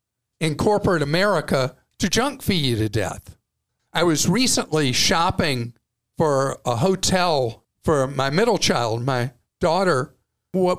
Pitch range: 140-195 Hz